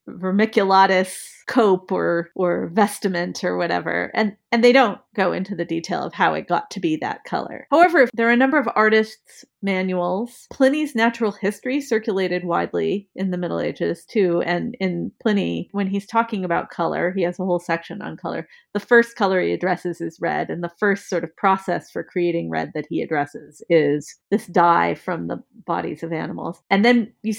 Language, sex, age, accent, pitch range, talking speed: English, female, 40-59, American, 180-235 Hz, 190 wpm